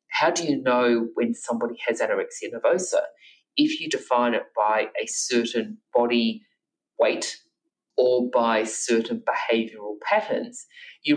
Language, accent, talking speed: English, Australian, 130 wpm